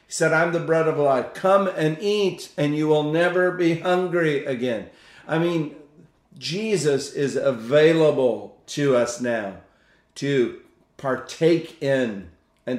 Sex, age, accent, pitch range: male, 50-69, American, 125-155 Hz